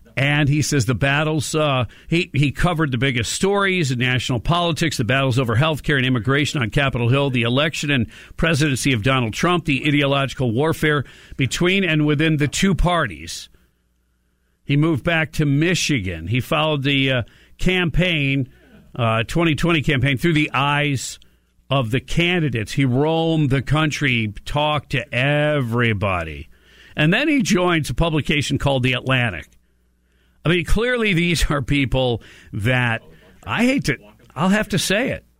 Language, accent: English, American